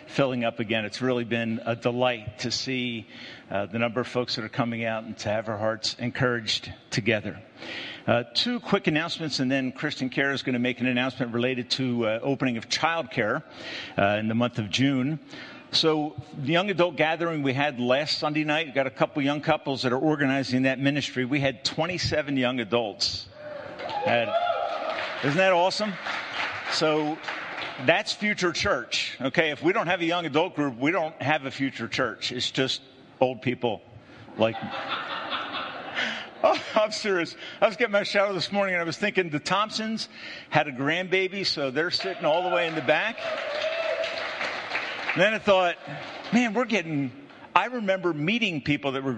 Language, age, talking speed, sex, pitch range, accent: English, 50-69, 180 wpm, male, 125-180 Hz, American